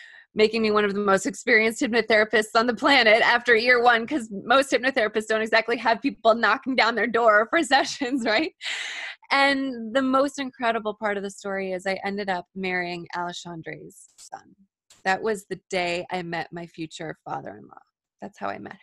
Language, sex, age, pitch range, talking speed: English, female, 20-39, 185-230 Hz, 180 wpm